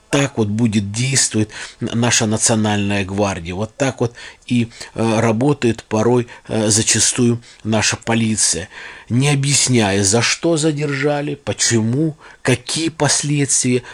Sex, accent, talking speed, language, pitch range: male, native, 105 wpm, Russian, 105-130 Hz